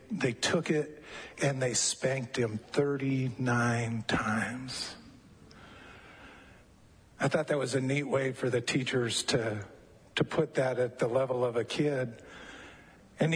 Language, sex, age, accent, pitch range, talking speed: English, male, 50-69, American, 120-150 Hz, 135 wpm